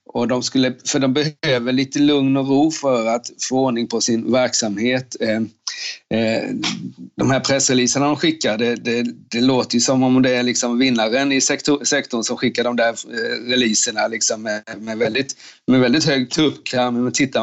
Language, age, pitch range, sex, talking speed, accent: Swedish, 30-49, 115-130 Hz, male, 165 wpm, native